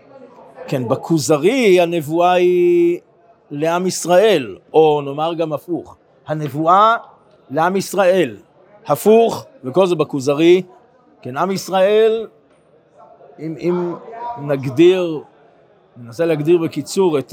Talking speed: 95 wpm